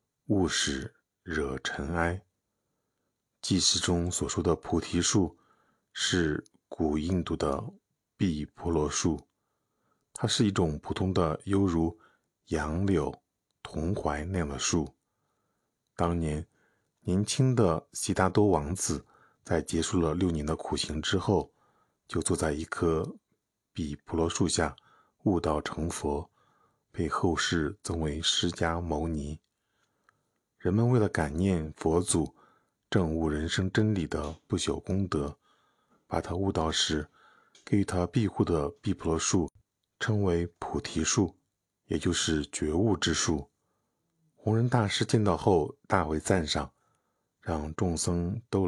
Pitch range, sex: 80-100 Hz, male